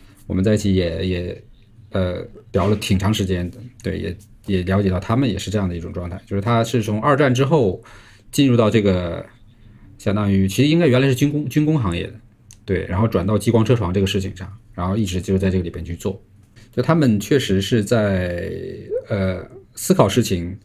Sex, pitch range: male, 95-120 Hz